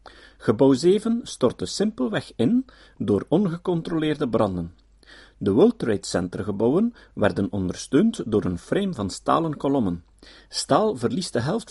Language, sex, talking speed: Dutch, male, 130 wpm